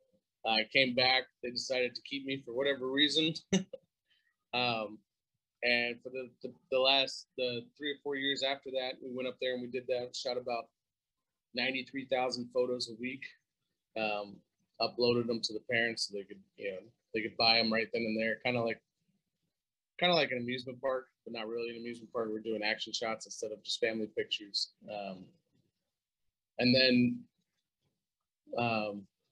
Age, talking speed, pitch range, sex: 30-49, 180 wpm, 115-135 Hz, male